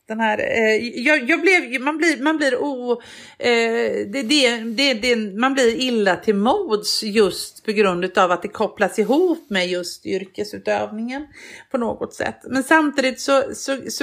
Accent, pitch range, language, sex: native, 200-280 Hz, Swedish, female